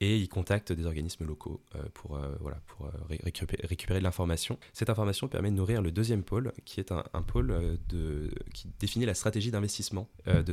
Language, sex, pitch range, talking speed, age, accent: French, male, 80-100 Hz, 200 wpm, 20-39, French